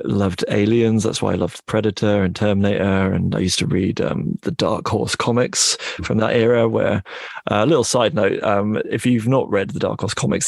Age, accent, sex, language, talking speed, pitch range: 30-49, British, male, English, 210 wpm, 95-115 Hz